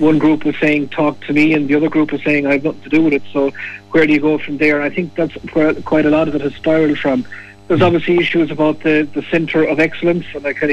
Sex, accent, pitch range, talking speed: male, Irish, 140-155 Hz, 290 wpm